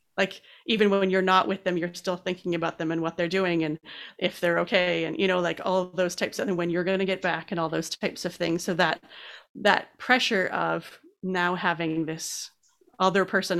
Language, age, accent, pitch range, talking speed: English, 30-49, American, 180-220 Hz, 220 wpm